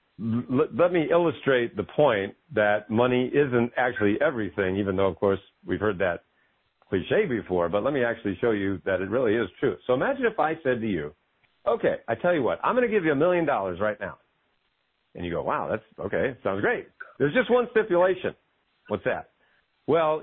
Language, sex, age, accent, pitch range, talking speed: English, male, 50-69, American, 105-165 Hz, 200 wpm